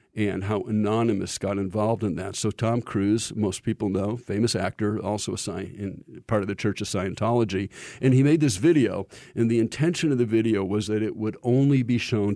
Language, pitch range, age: English, 105-125 Hz, 50-69